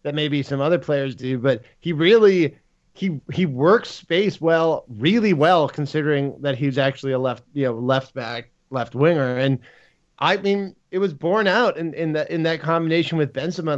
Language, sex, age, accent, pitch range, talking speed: English, male, 20-39, American, 135-165 Hz, 185 wpm